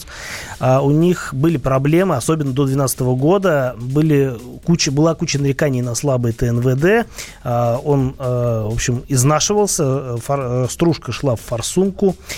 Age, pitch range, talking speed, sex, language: 20-39, 125-155 Hz, 135 wpm, male, Russian